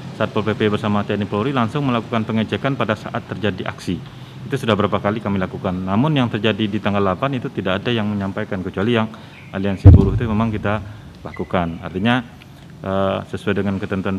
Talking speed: 180 wpm